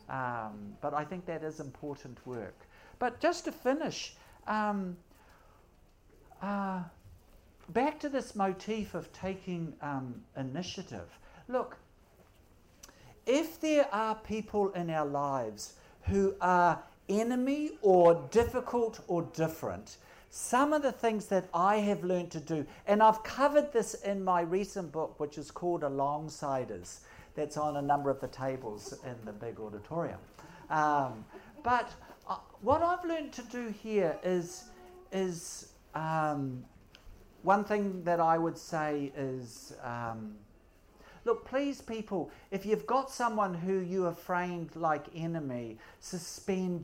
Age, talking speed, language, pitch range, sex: 60-79, 130 wpm, English, 135-210 Hz, male